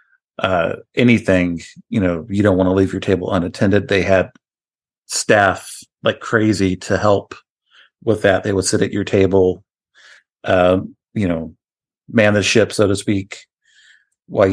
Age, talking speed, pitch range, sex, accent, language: 50-69, 155 wpm, 95-110 Hz, male, American, English